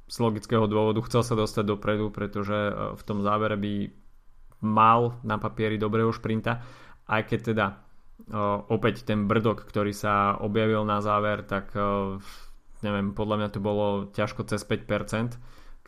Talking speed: 140 wpm